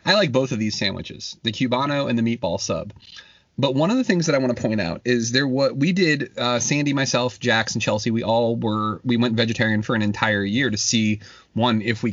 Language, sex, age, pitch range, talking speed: English, male, 30-49, 110-135 Hz, 240 wpm